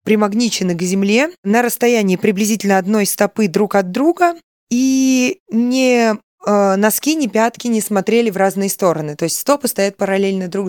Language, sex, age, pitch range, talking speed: Russian, female, 20-39, 190-240 Hz, 155 wpm